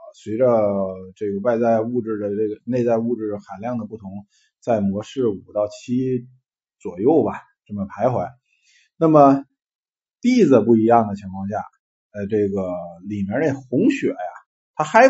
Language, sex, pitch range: Chinese, male, 100-140 Hz